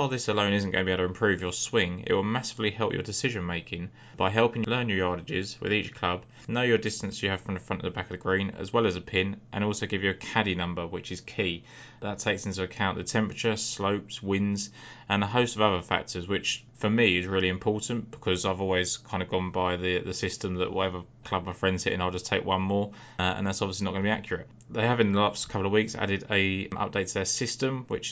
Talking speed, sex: 260 wpm, male